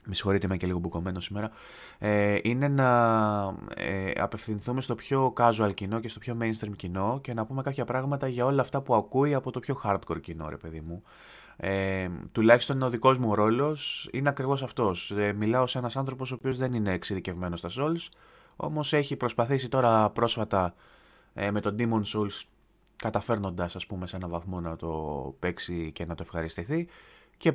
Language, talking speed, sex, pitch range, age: Greek, 185 wpm, male, 100-130 Hz, 20-39